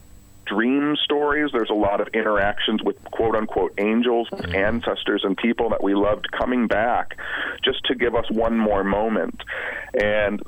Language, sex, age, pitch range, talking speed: English, male, 40-59, 95-115 Hz, 150 wpm